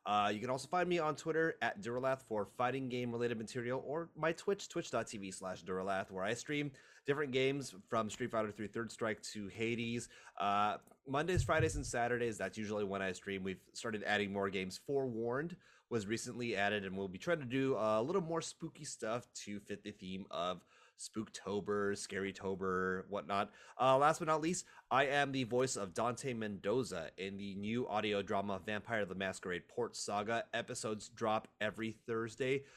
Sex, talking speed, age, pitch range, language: male, 185 wpm, 30-49, 100-140 Hz, English